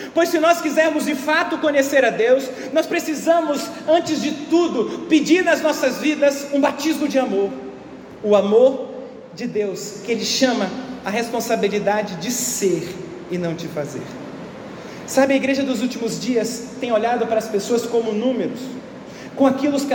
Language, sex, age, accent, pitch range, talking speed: Portuguese, male, 40-59, Brazilian, 255-310 Hz, 160 wpm